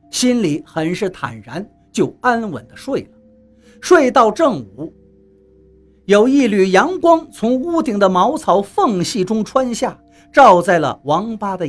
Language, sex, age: Chinese, male, 50-69